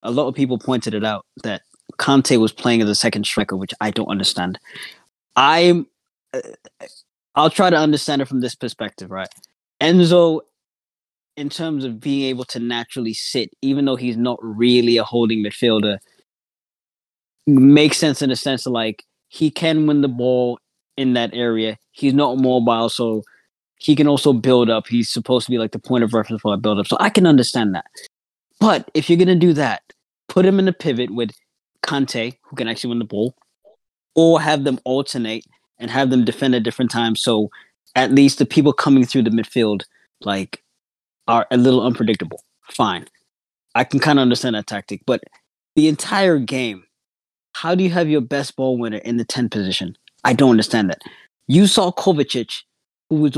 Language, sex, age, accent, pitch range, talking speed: English, male, 20-39, American, 115-145 Hz, 185 wpm